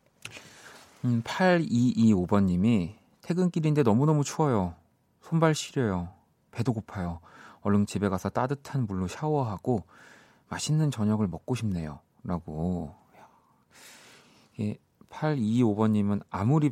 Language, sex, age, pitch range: Korean, male, 40-59, 95-130 Hz